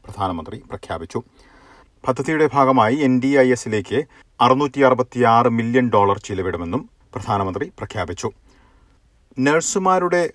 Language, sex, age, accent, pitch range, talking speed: Malayalam, male, 40-59, native, 105-130 Hz, 75 wpm